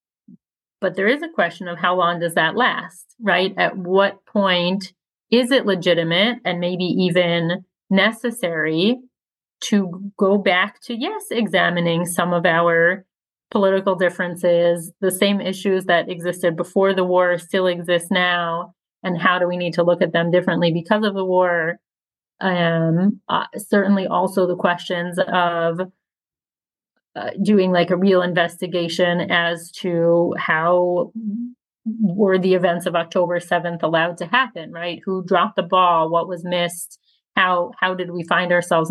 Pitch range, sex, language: 175-195 Hz, female, English